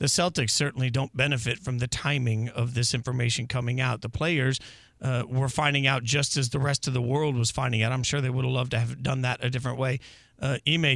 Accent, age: American, 40-59